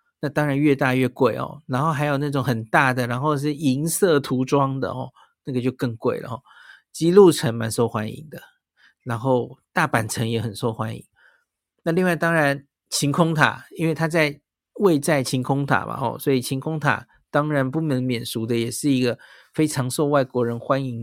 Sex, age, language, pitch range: male, 50-69, Chinese, 125-160 Hz